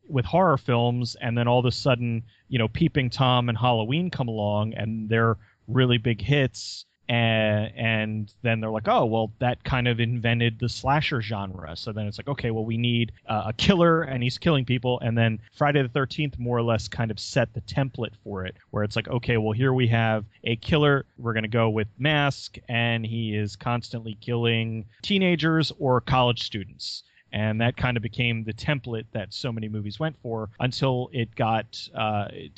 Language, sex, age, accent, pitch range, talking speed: English, male, 30-49, American, 110-130 Hz, 200 wpm